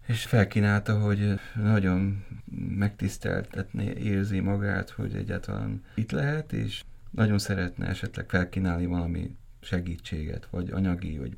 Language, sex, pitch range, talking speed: Hungarian, male, 95-115 Hz, 110 wpm